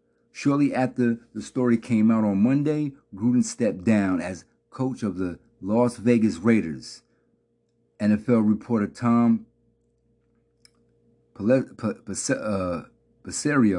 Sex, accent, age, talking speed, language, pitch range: male, American, 50-69, 95 wpm, English, 105-120 Hz